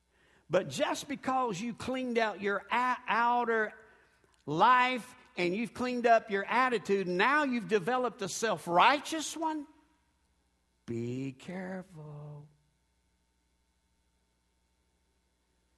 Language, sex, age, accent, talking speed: English, male, 60-79, American, 90 wpm